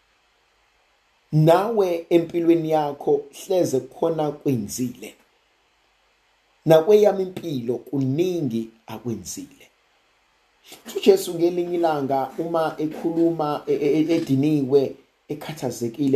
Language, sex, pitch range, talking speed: English, male, 125-165 Hz, 65 wpm